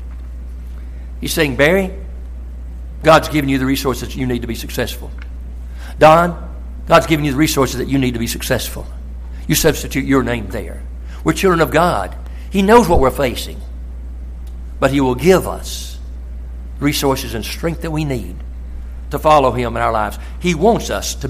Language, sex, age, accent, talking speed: English, male, 60-79, American, 170 wpm